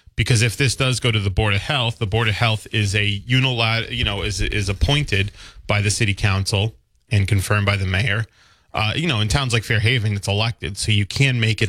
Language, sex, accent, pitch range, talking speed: English, male, American, 100-115 Hz, 225 wpm